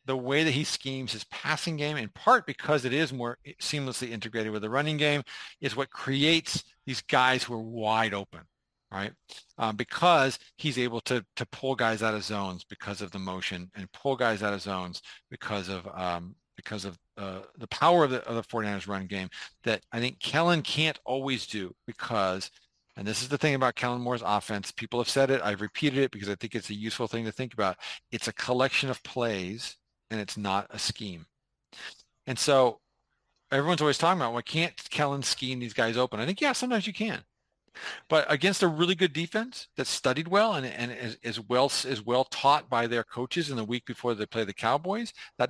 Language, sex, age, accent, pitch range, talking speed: English, male, 50-69, American, 110-150 Hz, 210 wpm